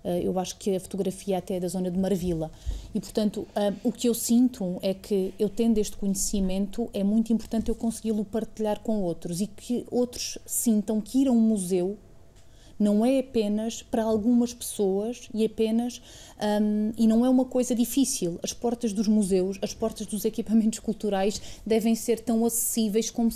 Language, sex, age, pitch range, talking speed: Portuguese, female, 30-49, 200-230 Hz, 180 wpm